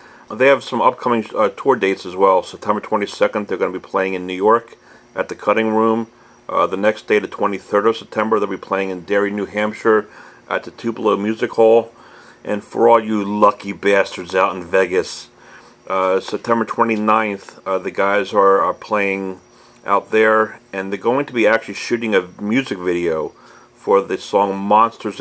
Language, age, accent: English, 40-59, American